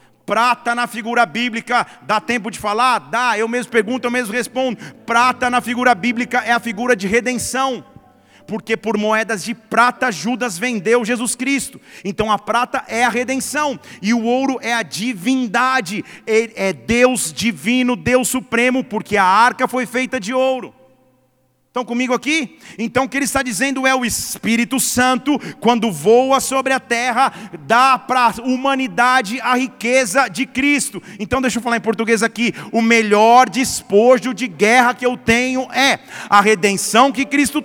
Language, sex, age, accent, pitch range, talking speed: Portuguese, male, 40-59, Brazilian, 225-255 Hz, 165 wpm